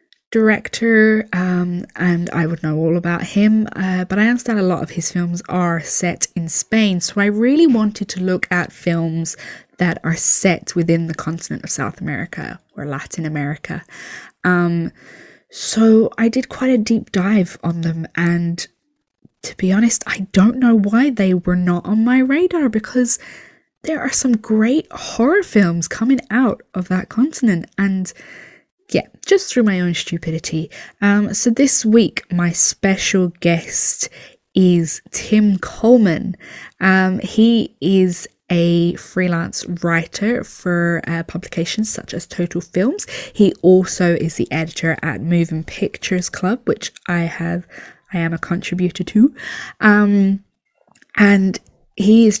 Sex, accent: female, British